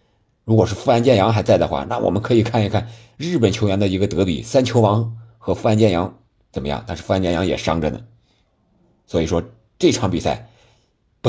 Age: 50-69